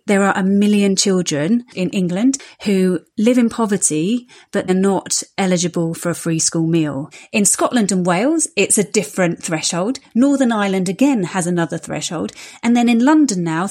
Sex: female